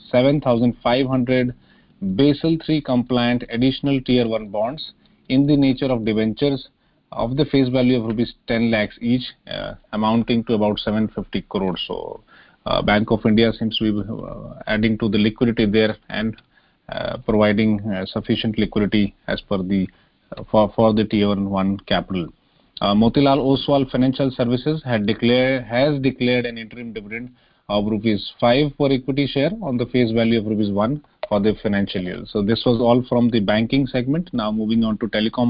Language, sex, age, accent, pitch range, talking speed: English, male, 30-49, Indian, 110-130 Hz, 165 wpm